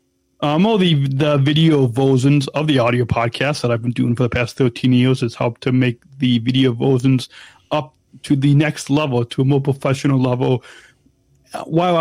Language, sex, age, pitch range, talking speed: English, male, 30-49, 125-165 Hz, 185 wpm